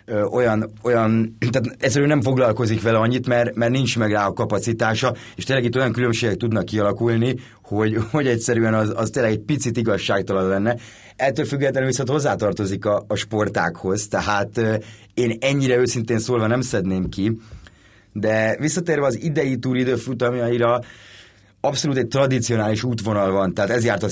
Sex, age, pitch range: male, 30-49, 100-120 Hz